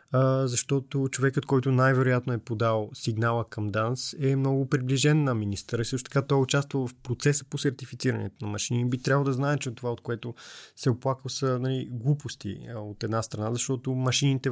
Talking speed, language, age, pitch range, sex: 185 wpm, Bulgarian, 20-39, 115-140 Hz, male